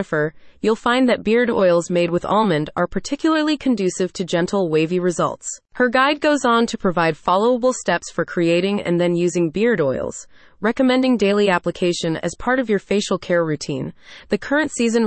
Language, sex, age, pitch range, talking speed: English, female, 30-49, 175-240 Hz, 170 wpm